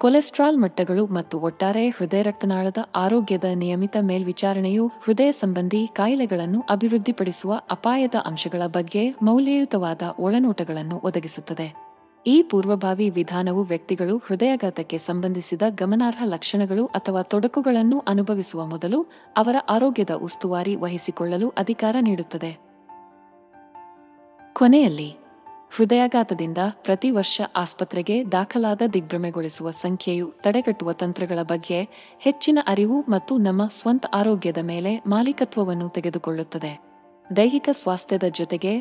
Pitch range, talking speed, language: 175-225 Hz, 90 wpm, Kannada